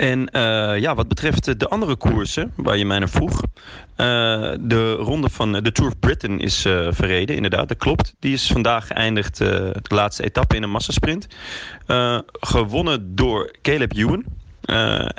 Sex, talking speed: male, 170 wpm